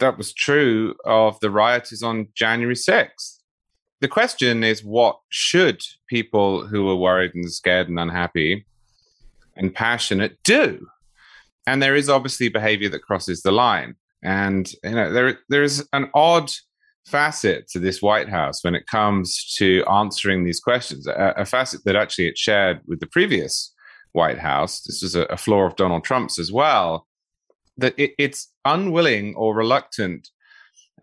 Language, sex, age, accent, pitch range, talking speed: English, male, 30-49, British, 100-130 Hz, 160 wpm